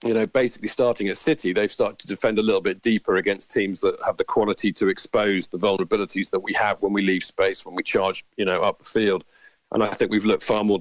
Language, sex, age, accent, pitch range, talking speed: English, male, 40-59, British, 105-120 Hz, 255 wpm